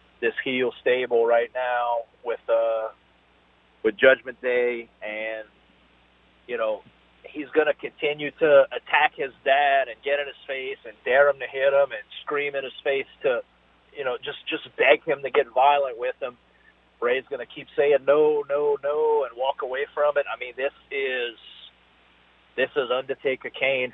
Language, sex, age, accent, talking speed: English, male, 40-59, American, 175 wpm